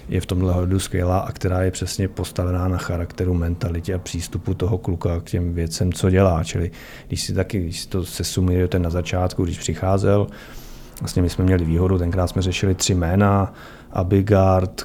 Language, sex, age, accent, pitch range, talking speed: Czech, male, 30-49, native, 90-100 Hz, 185 wpm